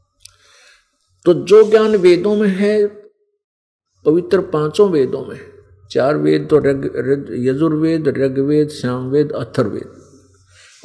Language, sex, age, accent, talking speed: Hindi, male, 50-69, native, 105 wpm